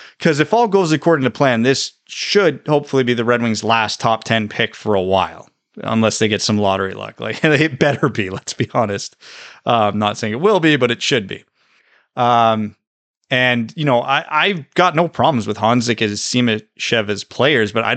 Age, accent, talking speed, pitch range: 30-49, American, 205 wpm, 110-135 Hz